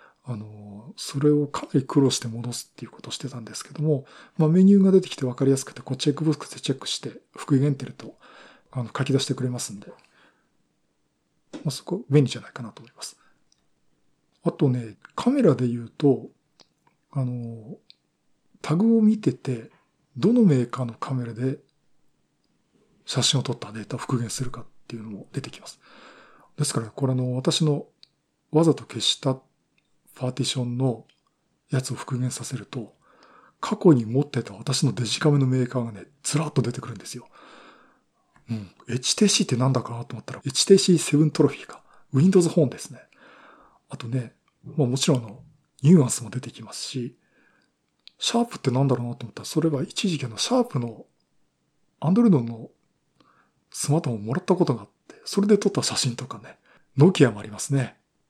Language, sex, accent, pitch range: Japanese, male, native, 120-155 Hz